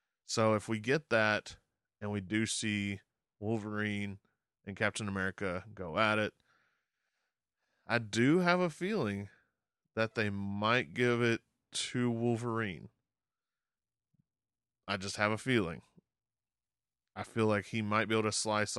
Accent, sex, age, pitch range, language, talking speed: American, male, 20-39, 100-115 Hz, English, 135 wpm